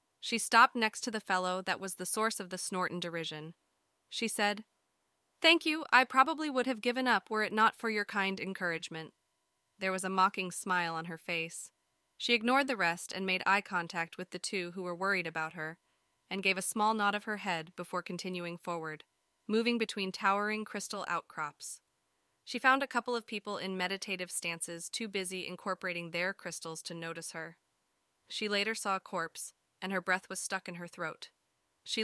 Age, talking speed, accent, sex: 20-39, 195 wpm, American, female